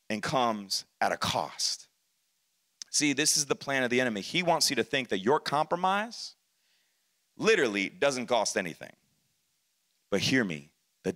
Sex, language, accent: male, English, American